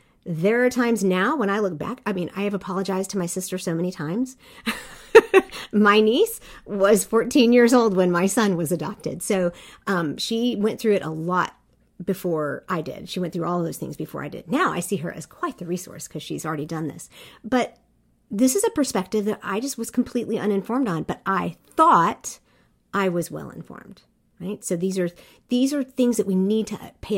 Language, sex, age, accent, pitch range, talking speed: English, female, 50-69, American, 180-250 Hz, 210 wpm